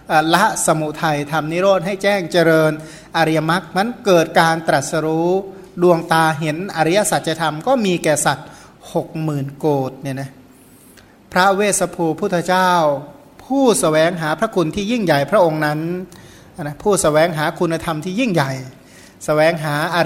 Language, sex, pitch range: Thai, male, 150-180 Hz